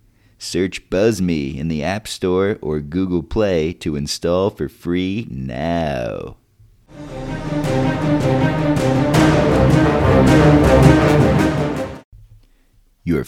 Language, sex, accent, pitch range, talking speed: English, male, American, 85-110 Hz, 70 wpm